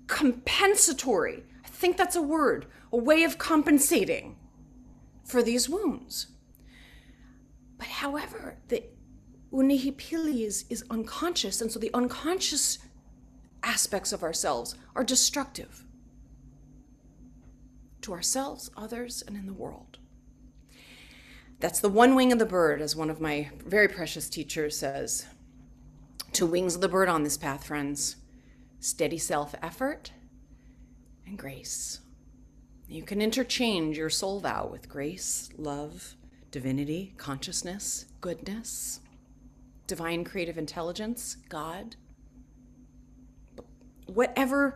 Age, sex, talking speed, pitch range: 40-59, female, 110 wpm, 150-250 Hz